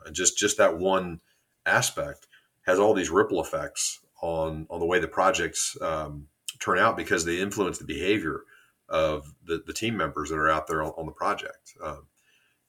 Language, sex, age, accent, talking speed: English, male, 40-59, American, 180 wpm